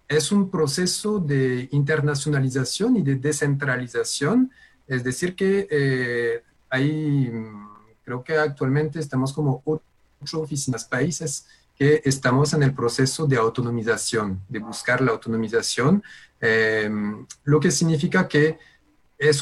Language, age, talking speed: Spanish, 30-49, 115 wpm